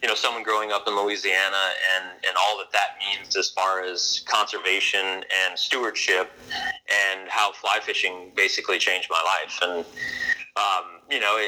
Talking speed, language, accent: 160 wpm, English, American